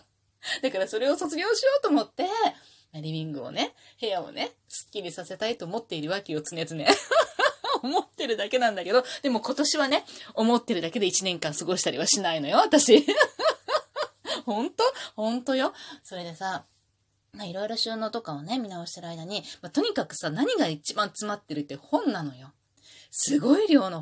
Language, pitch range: Japanese, 170-285 Hz